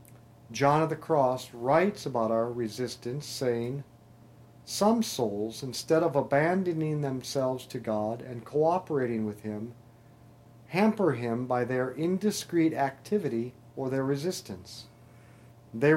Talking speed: 115 wpm